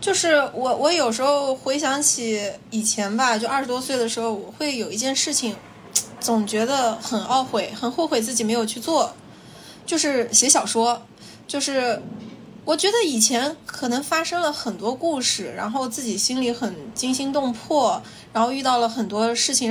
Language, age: Chinese, 20-39